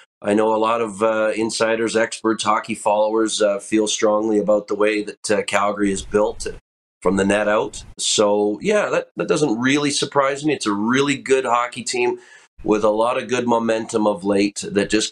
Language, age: English, 40-59